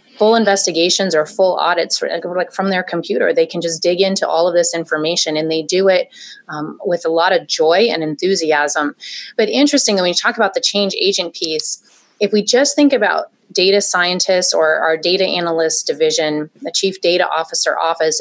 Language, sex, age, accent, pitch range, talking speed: English, female, 30-49, American, 165-195 Hz, 185 wpm